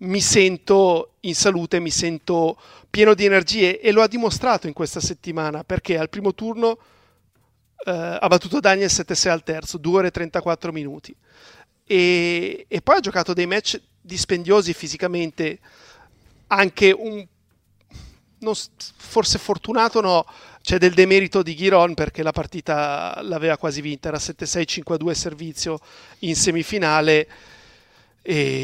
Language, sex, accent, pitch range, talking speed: Italian, male, native, 160-200 Hz, 140 wpm